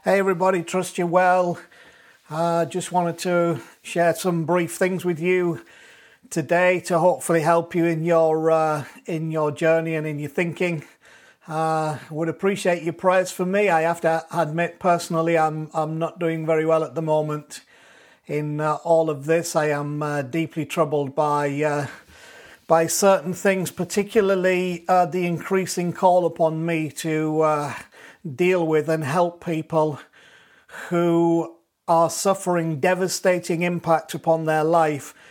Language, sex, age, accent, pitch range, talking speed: English, male, 40-59, British, 155-180 Hz, 150 wpm